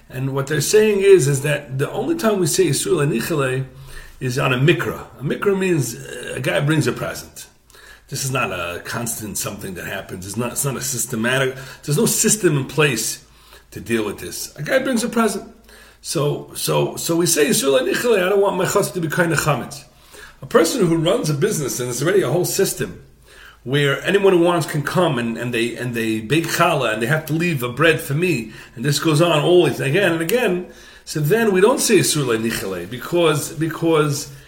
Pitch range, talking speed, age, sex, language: 135-190 Hz, 210 wpm, 40-59, male, English